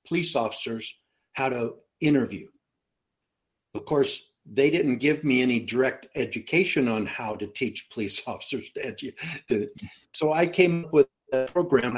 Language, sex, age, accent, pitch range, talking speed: English, male, 60-79, American, 120-140 Hz, 145 wpm